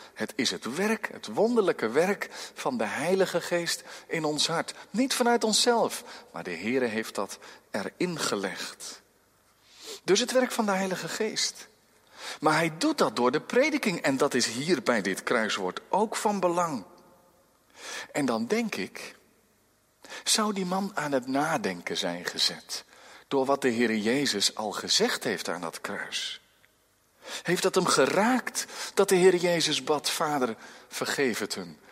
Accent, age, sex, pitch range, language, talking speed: Dutch, 40-59, male, 155-245 Hz, Dutch, 160 wpm